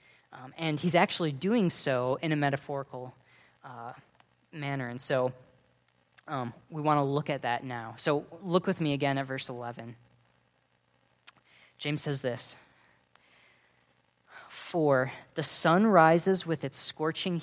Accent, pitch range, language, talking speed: American, 125-155 Hz, English, 135 wpm